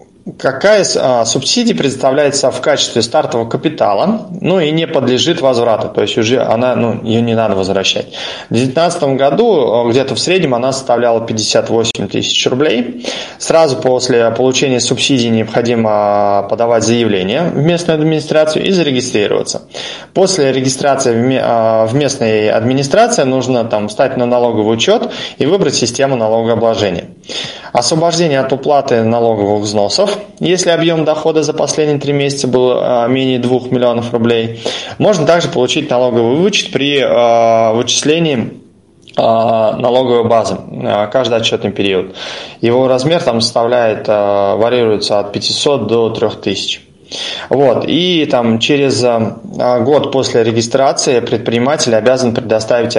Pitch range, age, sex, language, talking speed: 115-145 Hz, 20-39, male, Russian, 120 wpm